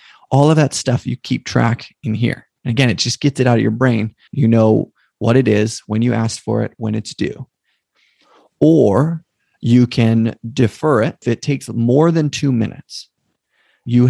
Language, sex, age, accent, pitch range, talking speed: English, male, 30-49, American, 115-135 Hz, 185 wpm